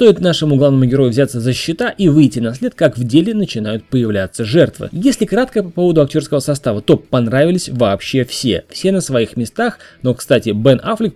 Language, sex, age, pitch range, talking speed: Russian, male, 20-39, 125-170 Hz, 190 wpm